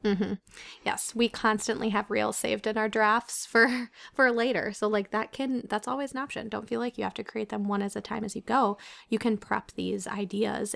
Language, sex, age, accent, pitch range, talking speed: English, female, 20-39, American, 210-235 Hz, 230 wpm